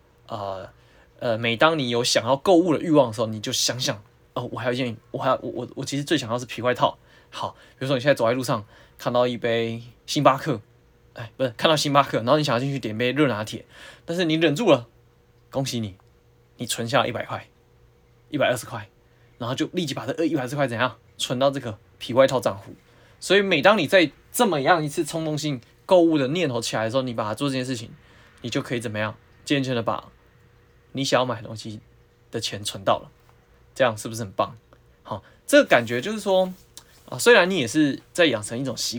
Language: Chinese